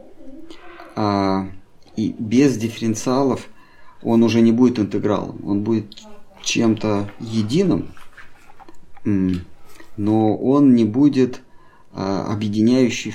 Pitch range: 100-135 Hz